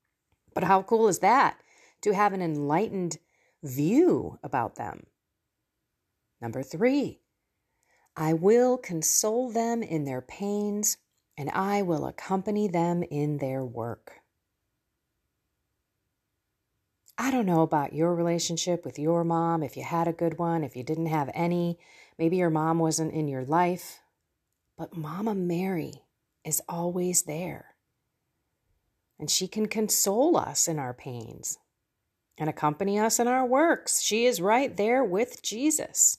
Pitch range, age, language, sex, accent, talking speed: 150-210 Hz, 40-59, English, female, American, 135 wpm